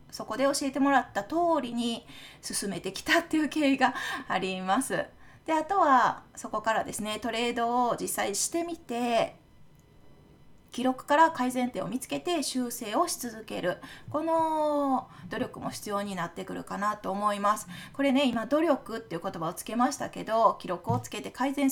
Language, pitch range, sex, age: Japanese, 215-310 Hz, female, 20-39